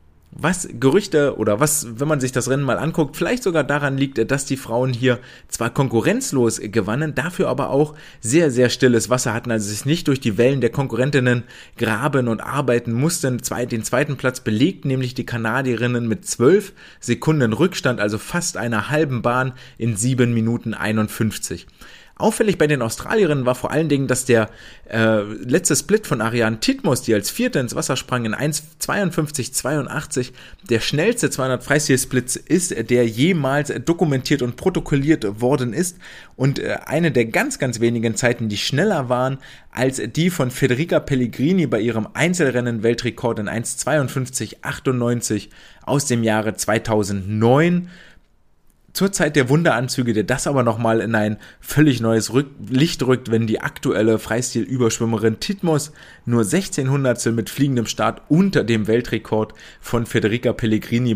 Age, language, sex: 30-49, German, male